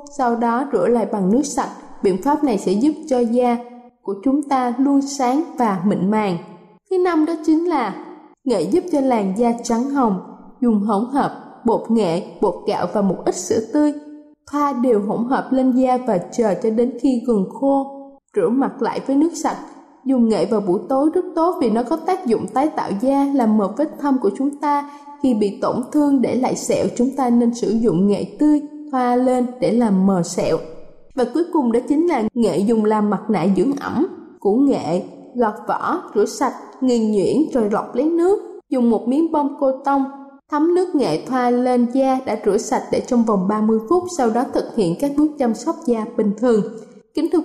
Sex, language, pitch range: female, Vietnamese, 225-285 Hz